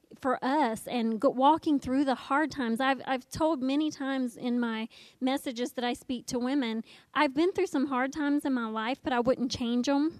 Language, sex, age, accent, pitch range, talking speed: English, female, 30-49, American, 230-275 Hz, 205 wpm